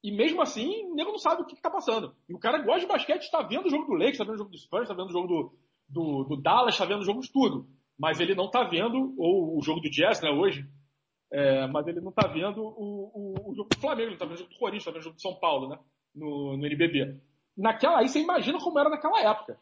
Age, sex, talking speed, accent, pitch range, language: 40-59, male, 285 wpm, Brazilian, 165-265 Hz, Portuguese